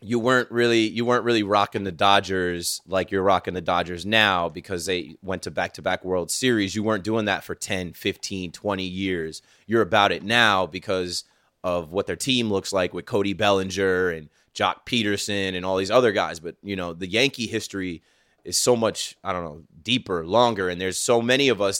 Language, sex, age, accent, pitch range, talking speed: English, male, 20-39, American, 100-130 Hz, 200 wpm